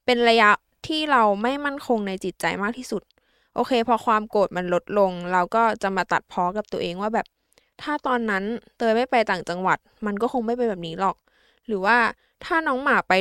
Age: 20-39